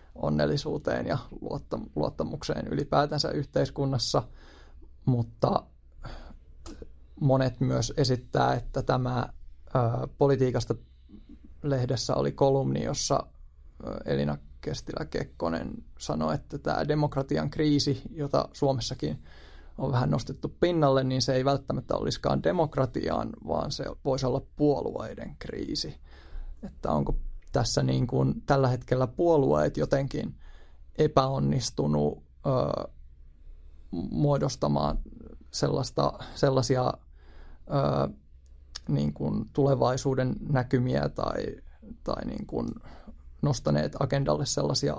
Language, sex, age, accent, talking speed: Finnish, male, 20-39, native, 90 wpm